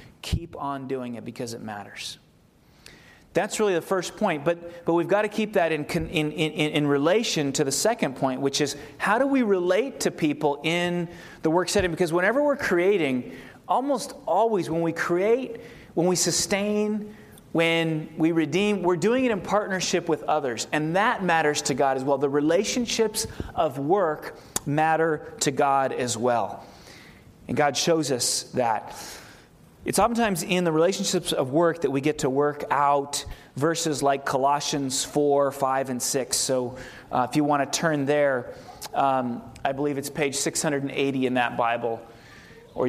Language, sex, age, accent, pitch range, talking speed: English, male, 30-49, American, 135-175 Hz, 170 wpm